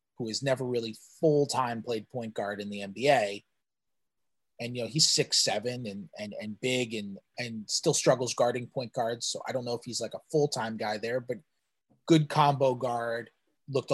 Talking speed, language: 185 wpm, English